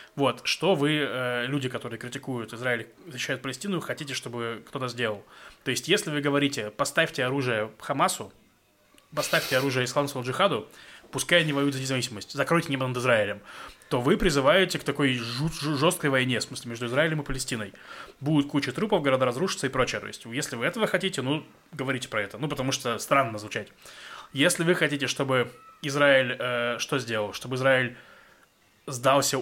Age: 20-39